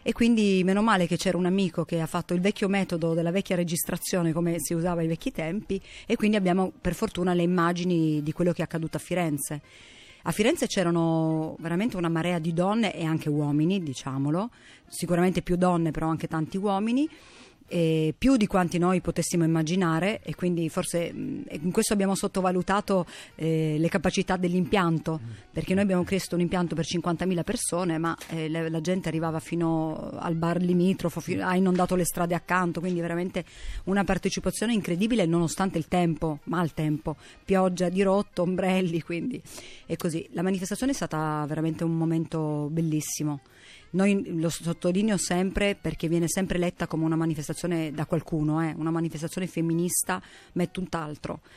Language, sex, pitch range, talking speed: Italian, female, 160-185 Hz, 170 wpm